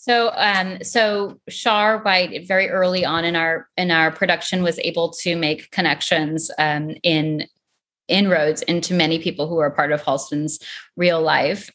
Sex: female